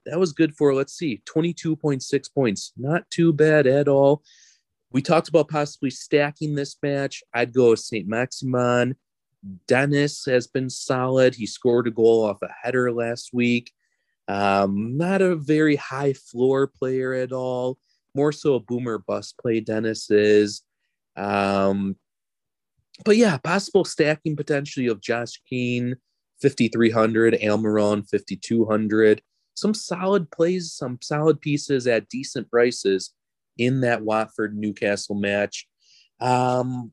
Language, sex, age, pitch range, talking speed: English, male, 30-49, 110-145 Hz, 130 wpm